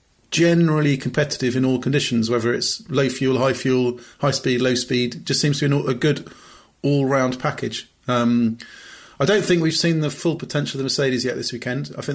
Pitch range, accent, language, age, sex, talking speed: 125-140 Hz, British, English, 30-49, male, 200 wpm